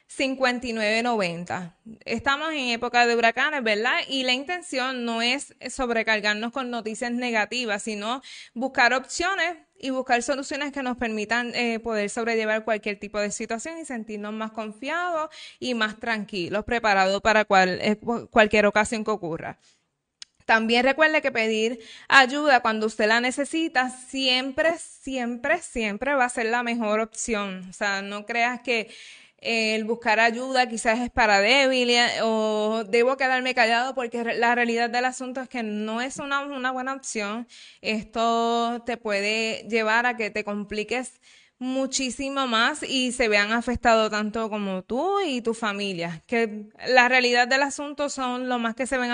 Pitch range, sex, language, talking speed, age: 220-255 Hz, female, Spanish, 150 wpm, 20-39